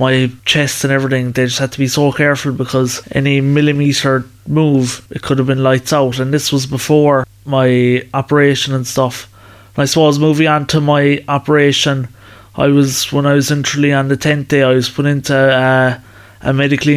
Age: 20-39